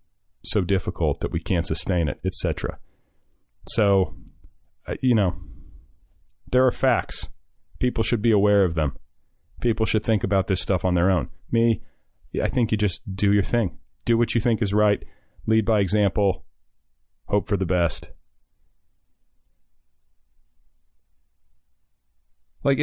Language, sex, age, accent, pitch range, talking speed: English, male, 30-49, American, 80-105 Hz, 135 wpm